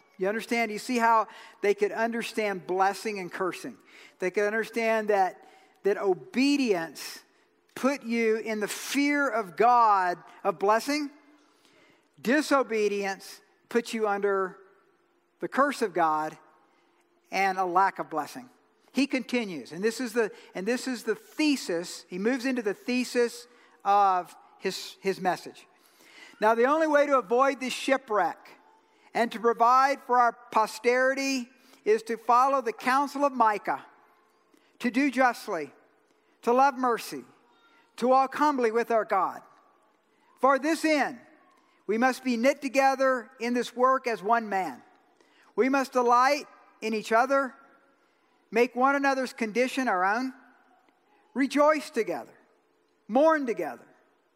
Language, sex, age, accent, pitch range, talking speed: English, male, 50-69, American, 215-275 Hz, 135 wpm